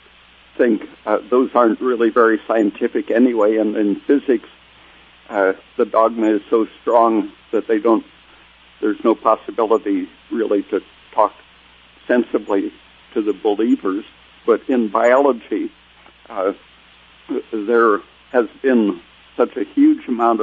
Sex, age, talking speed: male, 60-79, 120 wpm